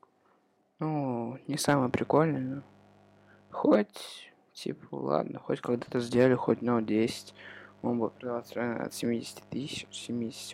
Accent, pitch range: native, 105-125 Hz